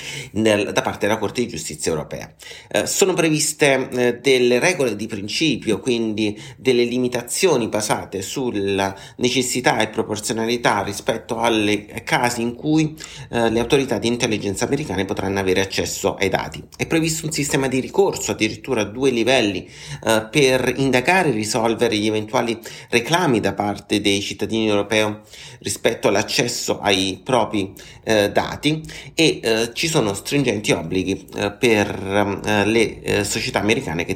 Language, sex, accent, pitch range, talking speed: Italian, male, native, 100-130 Hz, 145 wpm